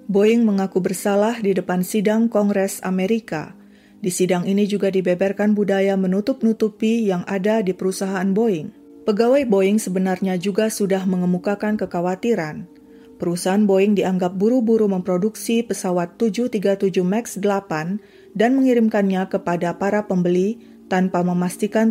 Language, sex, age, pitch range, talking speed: Indonesian, female, 30-49, 185-210 Hz, 120 wpm